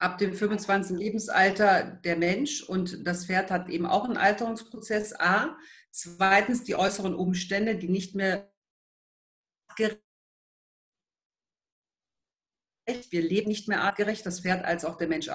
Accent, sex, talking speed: German, female, 135 wpm